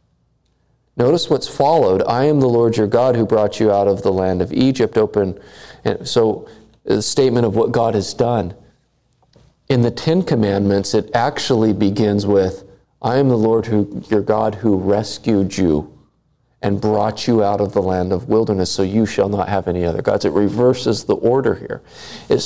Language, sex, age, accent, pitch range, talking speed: English, male, 40-59, American, 110-180 Hz, 185 wpm